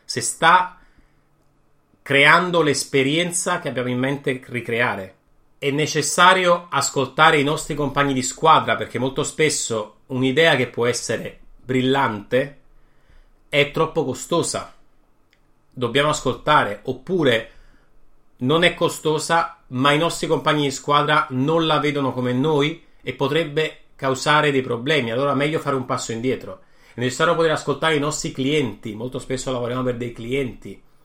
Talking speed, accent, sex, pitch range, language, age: 135 wpm, native, male, 125-155 Hz, Italian, 30-49